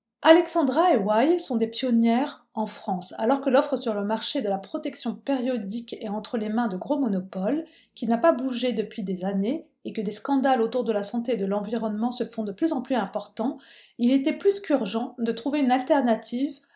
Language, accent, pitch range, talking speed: French, French, 220-275 Hz, 210 wpm